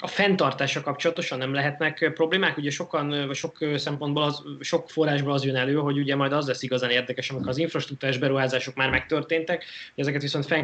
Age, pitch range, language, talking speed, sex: 20-39, 120-140 Hz, Hungarian, 185 wpm, male